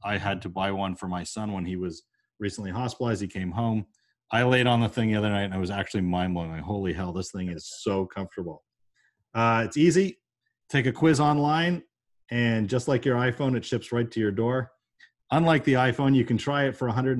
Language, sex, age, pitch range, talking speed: English, male, 40-59, 100-125 Hz, 225 wpm